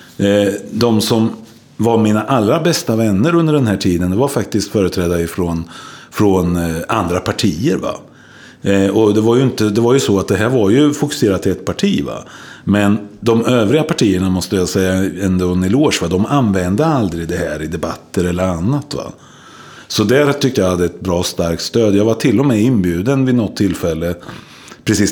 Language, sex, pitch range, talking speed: Swedish, male, 95-120 Hz, 185 wpm